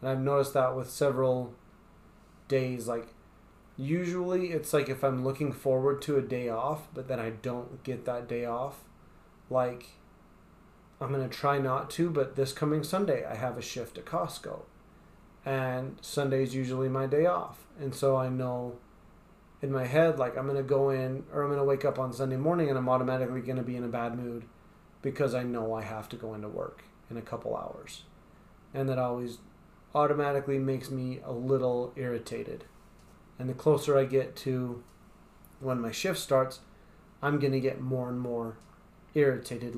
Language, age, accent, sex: English, 30-49, American, male